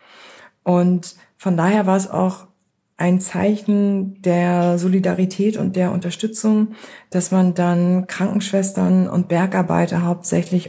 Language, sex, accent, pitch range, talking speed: German, female, German, 170-195 Hz, 110 wpm